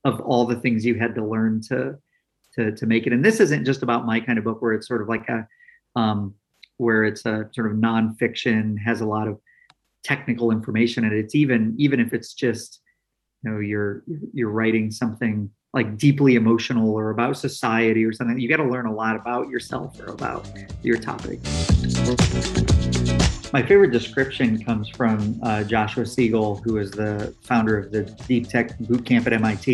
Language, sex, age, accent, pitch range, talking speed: English, male, 30-49, American, 110-125 Hz, 190 wpm